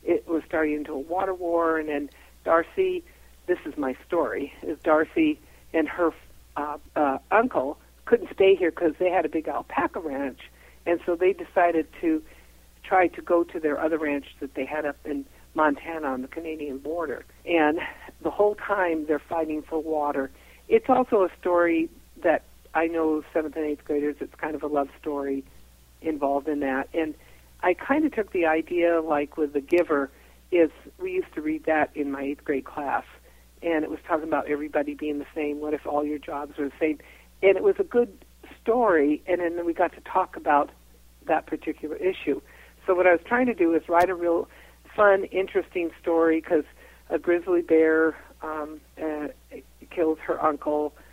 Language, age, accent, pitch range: English, 60-79, American, 150-175 Hz